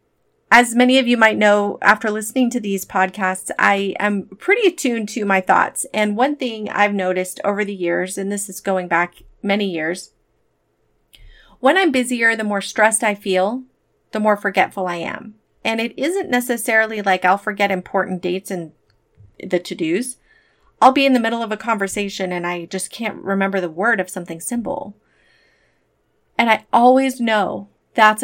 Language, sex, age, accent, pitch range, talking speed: English, female, 30-49, American, 190-245 Hz, 170 wpm